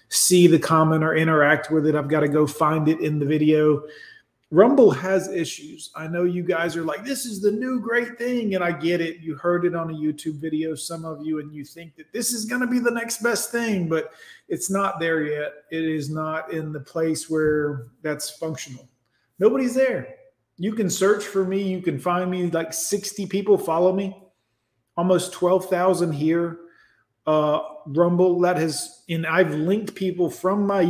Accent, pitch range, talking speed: American, 155-190 Hz, 195 wpm